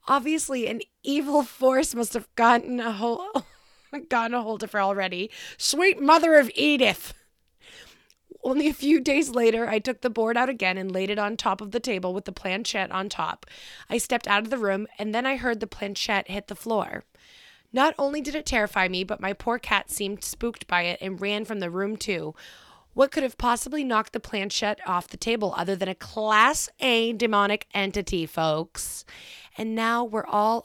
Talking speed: 190 wpm